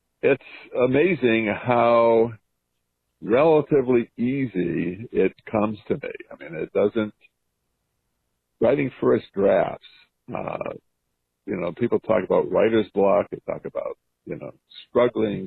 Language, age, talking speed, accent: English, 60-79, 115 wpm, American